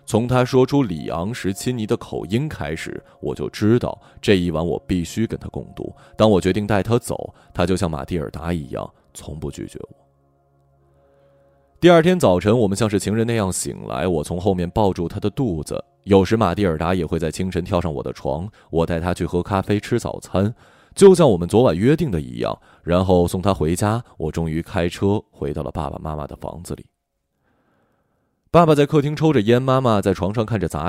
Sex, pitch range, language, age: male, 80-110 Hz, Chinese, 20-39